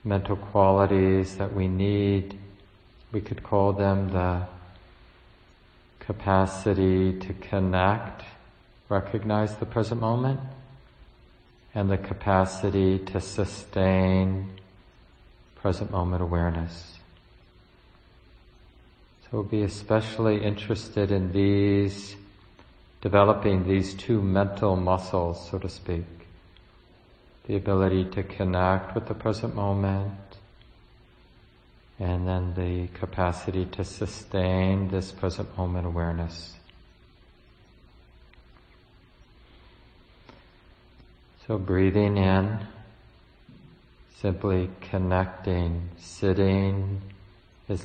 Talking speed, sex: 80 wpm, male